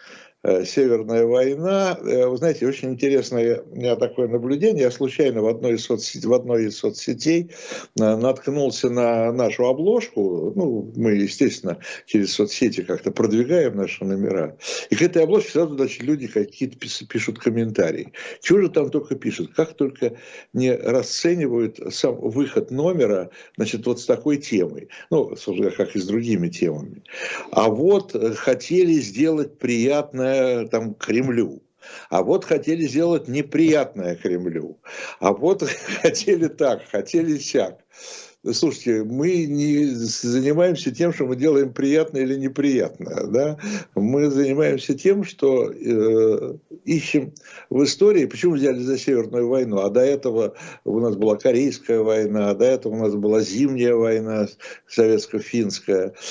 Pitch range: 115-160 Hz